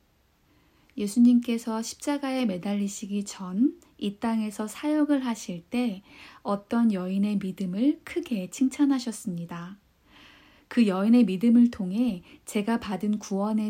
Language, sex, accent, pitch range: Korean, female, native, 190-245 Hz